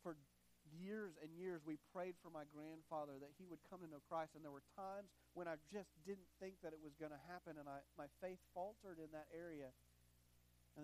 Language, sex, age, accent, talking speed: English, male, 40-59, American, 215 wpm